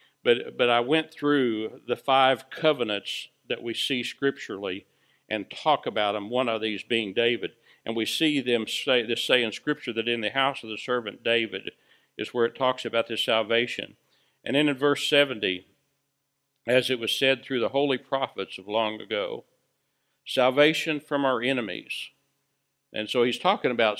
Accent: American